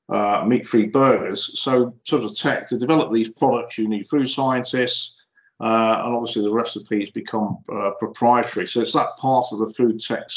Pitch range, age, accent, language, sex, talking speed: 110-150 Hz, 50-69, British, English, male, 180 wpm